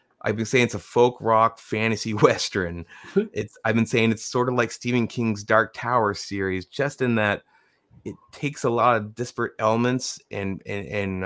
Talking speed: 185 wpm